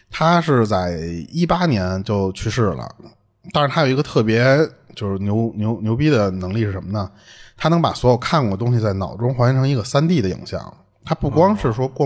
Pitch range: 105-135 Hz